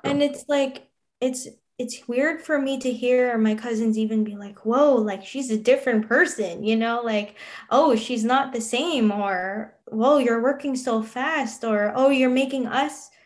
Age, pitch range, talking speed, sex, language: 10-29, 205-245 Hz, 180 wpm, female, English